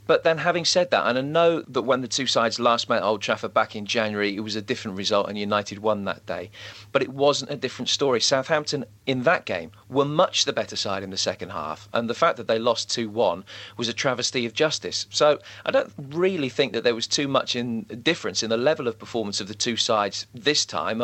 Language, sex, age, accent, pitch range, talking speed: English, male, 40-59, British, 105-140 Hz, 240 wpm